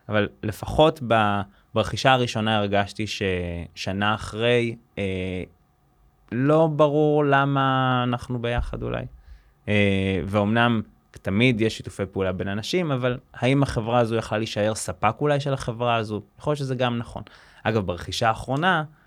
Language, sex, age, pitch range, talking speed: Hebrew, male, 20-39, 95-120 Hz, 130 wpm